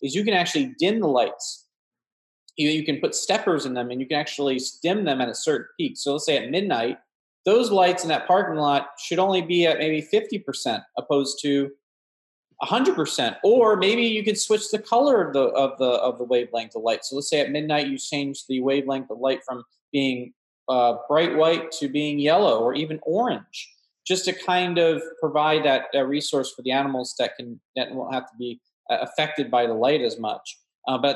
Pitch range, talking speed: 135-175 Hz, 220 wpm